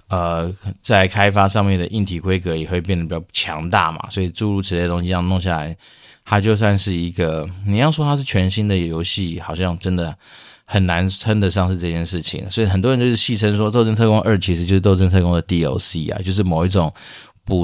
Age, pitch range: 20-39, 85-100 Hz